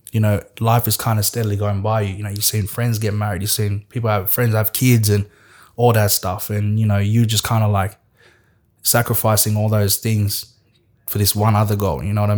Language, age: English, 20-39